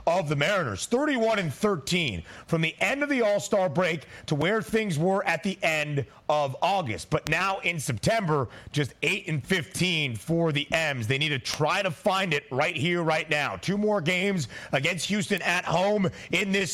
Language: English